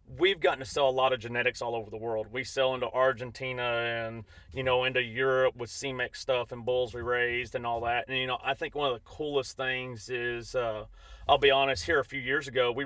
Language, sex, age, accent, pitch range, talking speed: English, male, 30-49, American, 120-135 Hz, 245 wpm